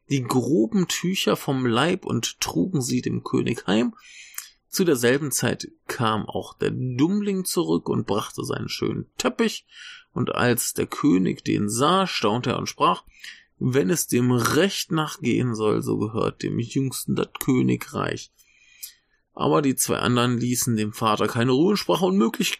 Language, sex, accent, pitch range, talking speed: German, male, German, 115-185 Hz, 155 wpm